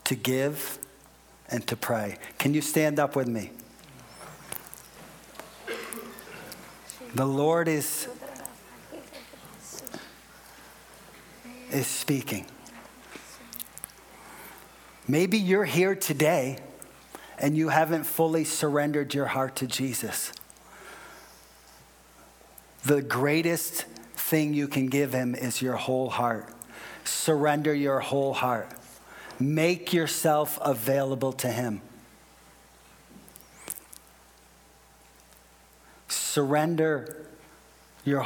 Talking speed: 80 wpm